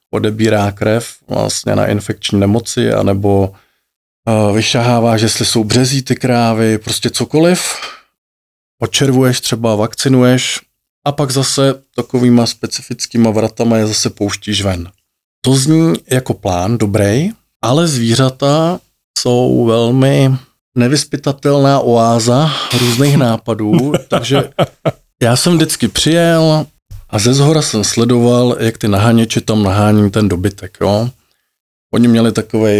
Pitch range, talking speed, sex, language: 100-125 Hz, 115 wpm, male, Slovak